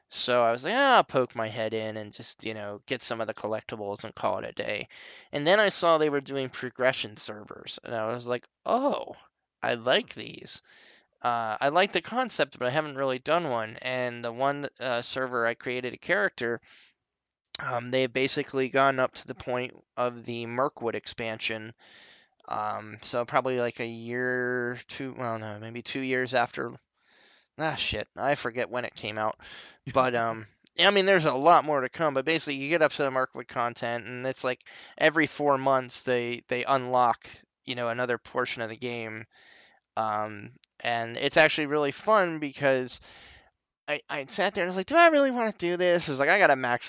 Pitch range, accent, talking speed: 115-140 Hz, American, 200 wpm